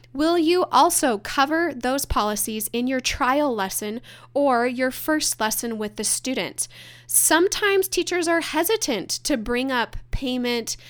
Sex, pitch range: female, 210-280 Hz